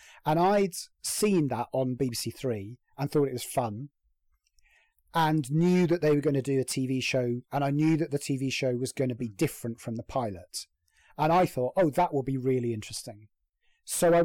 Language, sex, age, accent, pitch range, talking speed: English, male, 30-49, British, 120-160 Hz, 205 wpm